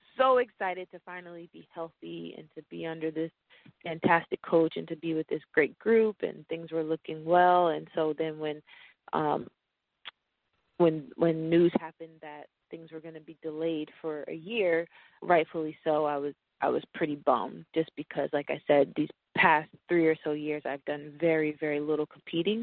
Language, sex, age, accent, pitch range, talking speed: English, female, 30-49, American, 150-170 Hz, 185 wpm